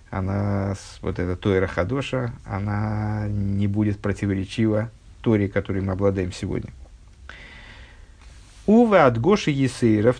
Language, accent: Russian, native